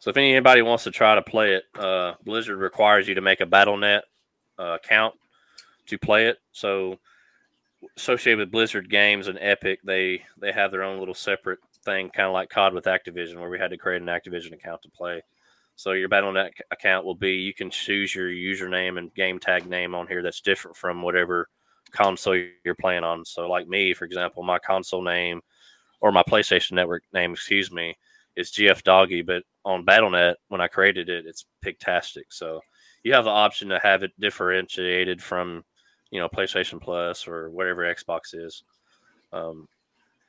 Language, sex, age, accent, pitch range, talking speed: English, male, 20-39, American, 90-100 Hz, 185 wpm